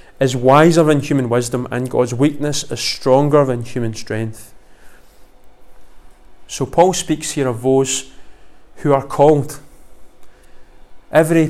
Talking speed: 120 wpm